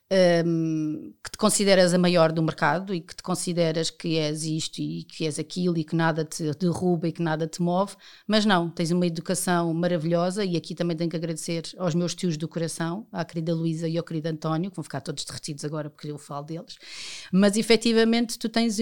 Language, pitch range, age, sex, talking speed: Portuguese, 175-230 Hz, 30-49, female, 210 wpm